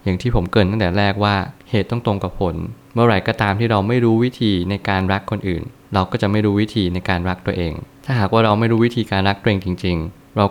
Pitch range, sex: 95-115 Hz, male